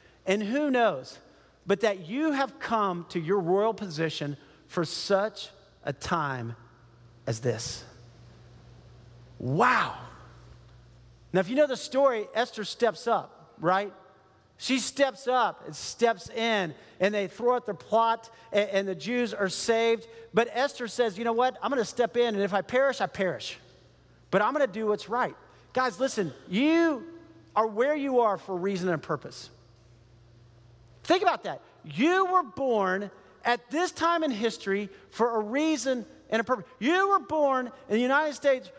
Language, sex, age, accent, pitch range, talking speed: English, male, 40-59, American, 175-270 Hz, 160 wpm